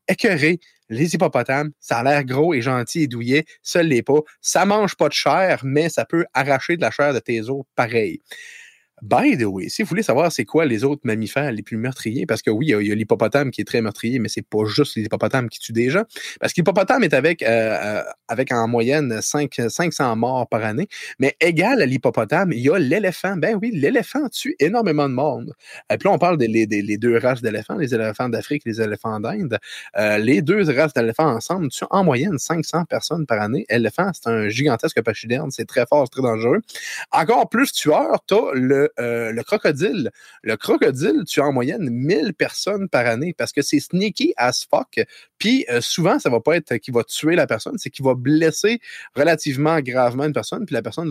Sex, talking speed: male, 220 wpm